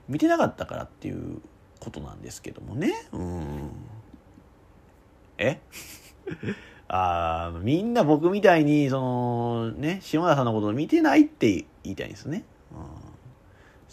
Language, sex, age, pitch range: Japanese, male, 30-49, 95-155 Hz